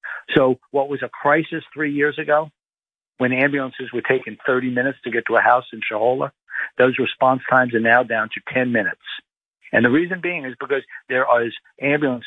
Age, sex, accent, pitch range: 50-69, male, American, 115-140 Hz